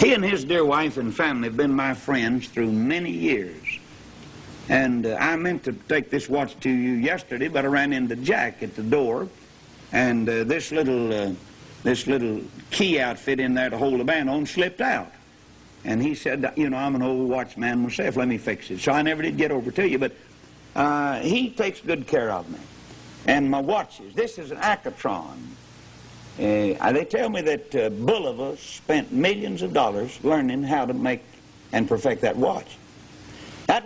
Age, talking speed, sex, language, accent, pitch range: 60-79, 190 wpm, male, English, American, 120-155 Hz